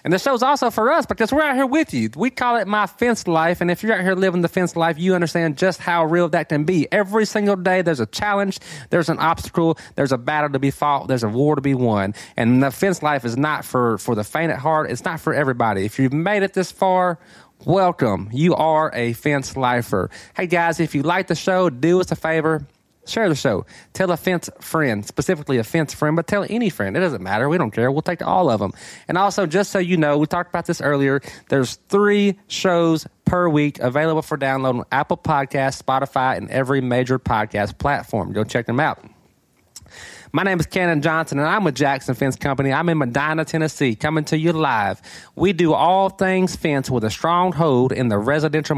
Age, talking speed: 20-39, 225 wpm